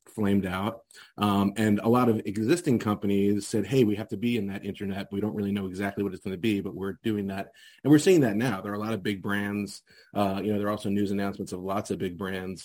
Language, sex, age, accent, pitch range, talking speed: English, male, 30-49, American, 100-105 Hz, 270 wpm